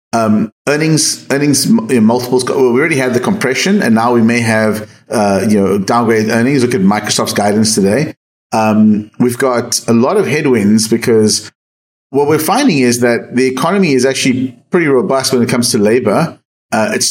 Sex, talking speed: male, 180 wpm